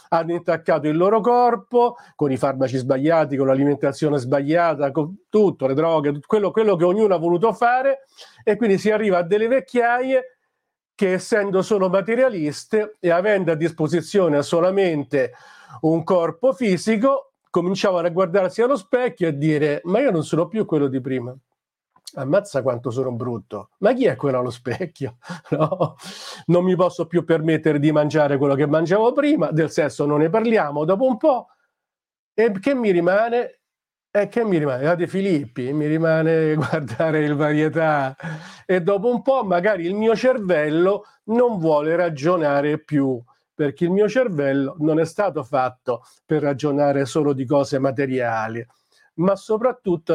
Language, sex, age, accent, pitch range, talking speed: Italian, male, 50-69, native, 150-210 Hz, 160 wpm